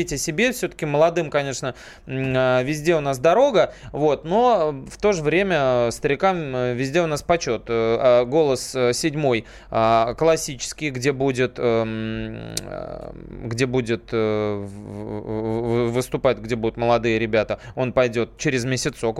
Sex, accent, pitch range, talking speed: male, native, 120-180 Hz, 110 wpm